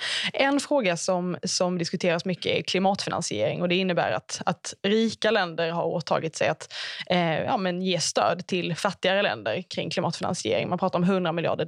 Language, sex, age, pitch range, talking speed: Swedish, female, 20-39, 175-200 Hz, 175 wpm